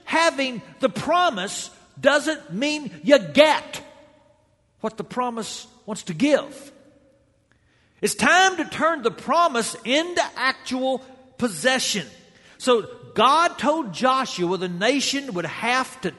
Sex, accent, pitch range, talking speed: male, American, 175-260 Hz, 115 wpm